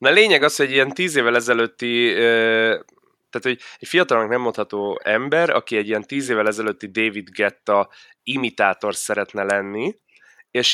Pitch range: 100-115 Hz